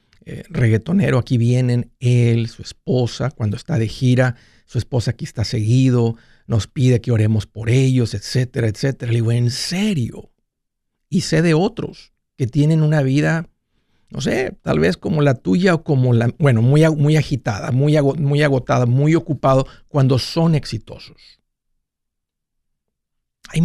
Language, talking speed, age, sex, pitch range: Spanish, 145 wpm, 50-69, male, 115-155 Hz